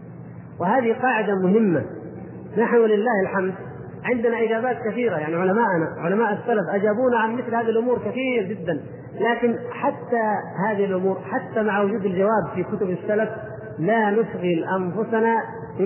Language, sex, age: Arabic, male, 40-59